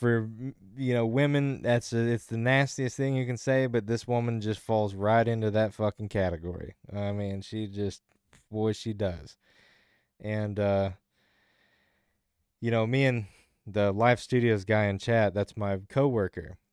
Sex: male